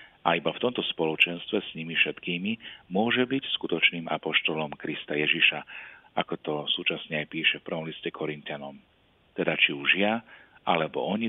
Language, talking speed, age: Slovak, 155 wpm, 40-59